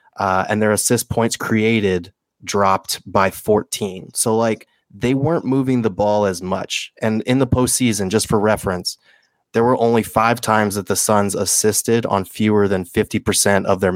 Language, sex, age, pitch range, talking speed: English, male, 20-39, 100-115 Hz, 170 wpm